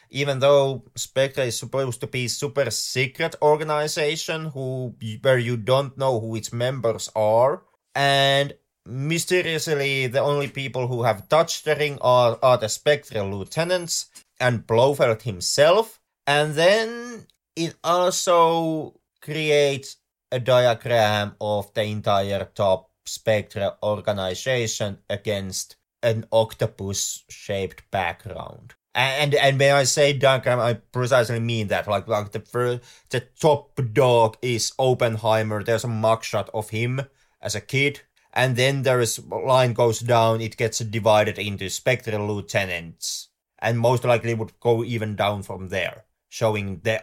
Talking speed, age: 135 wpm, 30-49